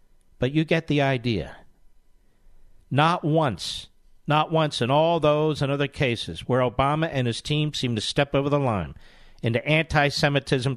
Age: 50-69